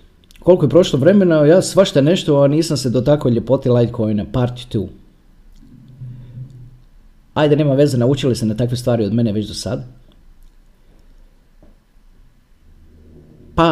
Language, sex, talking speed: Croatian, male, 130 wpm